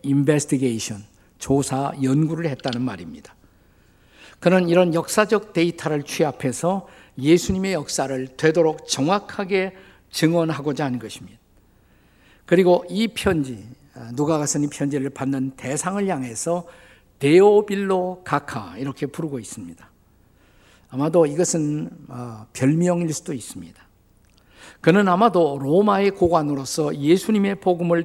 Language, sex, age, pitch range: Korean, male, 50-69, 130-180 Hz